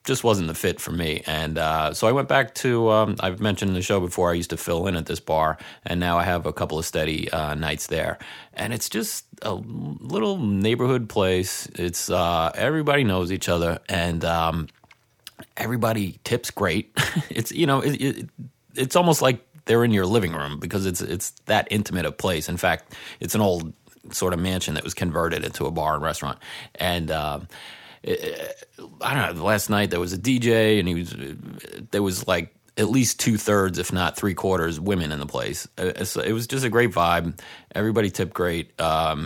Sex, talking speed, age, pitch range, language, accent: male, 205 wpm, 30-49, 85-110 Hz, English, American